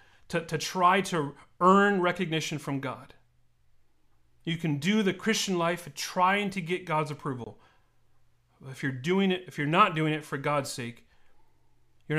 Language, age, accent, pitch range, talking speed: English, 40-59, American, 120-165 Hz, 160 wpm